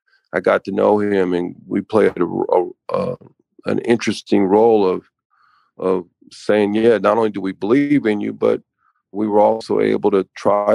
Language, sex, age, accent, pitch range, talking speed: English, male, 40-59, American, 100-125 Hz, 180 wpm